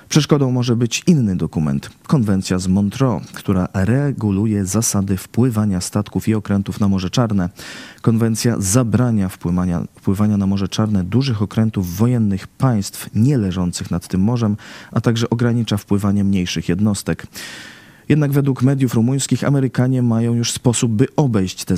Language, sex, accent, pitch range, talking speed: Polish, male, native, 95-120 Hz, 135 wpm